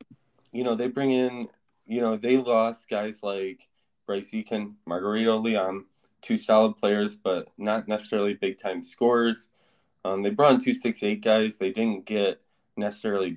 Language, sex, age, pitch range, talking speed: English, male, 20-39, 95-115 Hz, 155 wpm